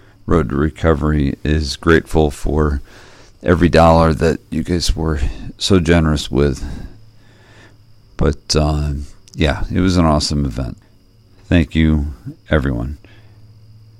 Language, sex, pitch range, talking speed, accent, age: English, male, 75-100 Hz, 110 wpm, American, 50-69